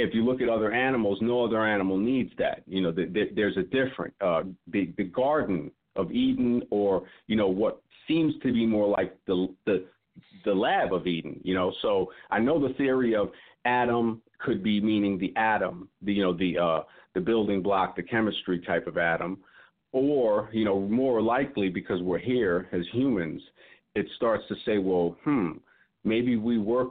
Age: 50-69